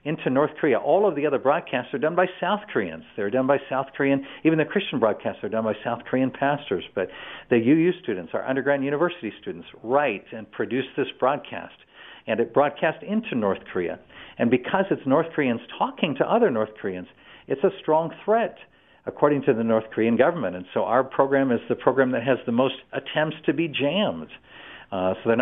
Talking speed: 200 wpm